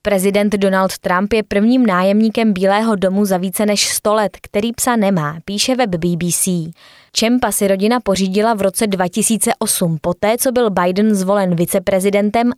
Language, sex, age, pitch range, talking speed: Czech, female, 20-39, 190-225 Hz, 155 wpm